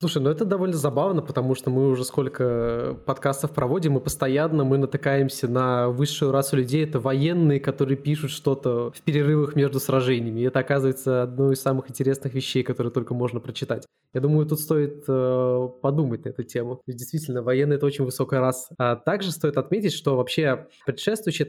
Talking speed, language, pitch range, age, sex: 180 wpm, Russian, 130-150 Hz, 20-39, male